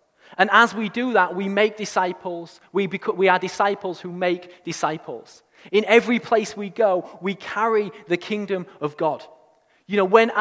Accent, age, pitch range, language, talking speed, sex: British, 20-39, 180-230 Hz, English, 160 wpm, male